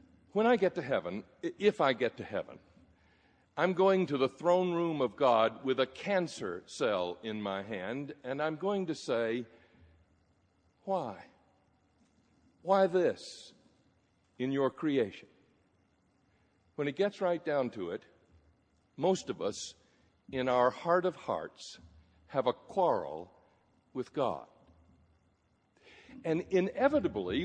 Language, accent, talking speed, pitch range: English, American, 125 wpm, 120-190 Hz